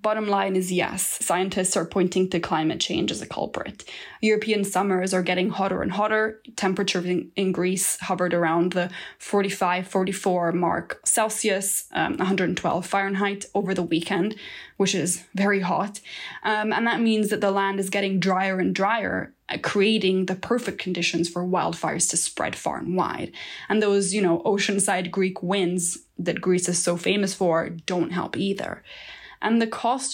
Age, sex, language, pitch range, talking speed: 20-39, female, English, 180-210 Hz, 165 wpm